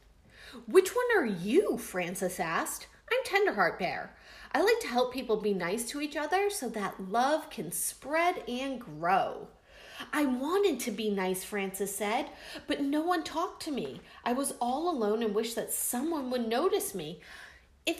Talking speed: 170 wpm